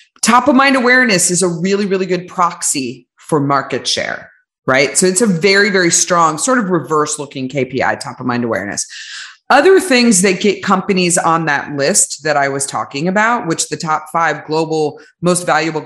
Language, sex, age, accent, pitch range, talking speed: English, female, 30-49, American, 140-180 Hz, 165 wpm